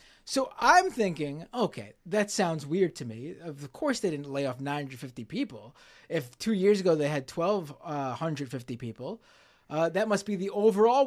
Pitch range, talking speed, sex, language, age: 150-220 Hz, 175 wpm, male, English, 30-49